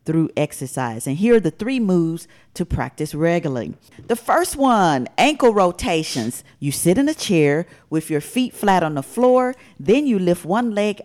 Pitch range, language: 145-215 Hz, English